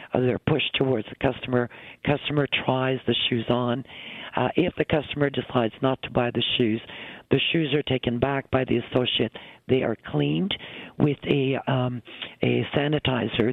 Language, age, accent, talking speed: English, 60-79, American, 160 wpm